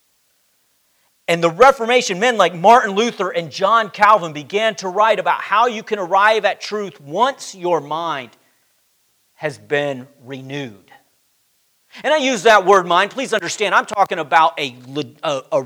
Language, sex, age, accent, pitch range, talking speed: English, male, 40-59, American, 170-230 Hz, 150 wpm